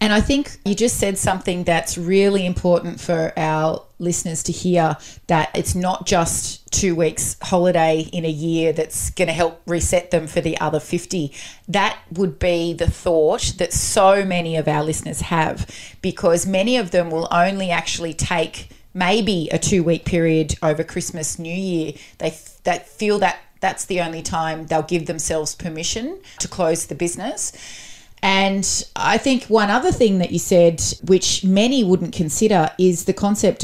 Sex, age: female, 30-49